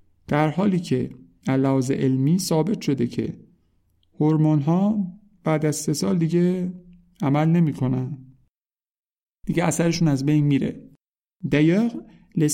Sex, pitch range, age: male, 135-175 Hz, 50-69